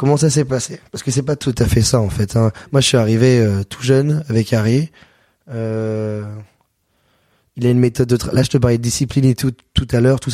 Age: 20-39